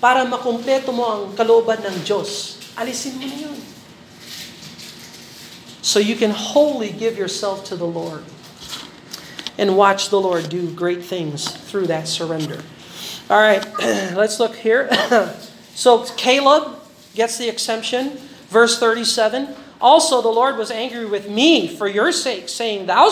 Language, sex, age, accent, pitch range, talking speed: Filipino, male, 40-59, American, 205-275 Hz, 140 wpm